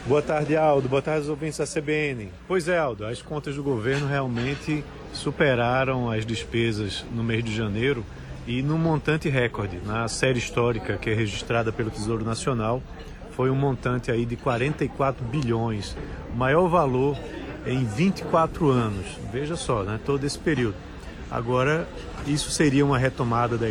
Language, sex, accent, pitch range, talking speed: Portuguese, male, Brazilian, 115-145 Hz, 155 wpm